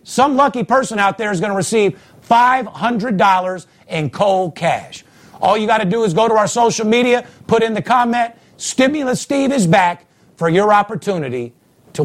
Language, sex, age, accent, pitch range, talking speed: English, male, 50-69, American, 165-230 Hz, 180 wpm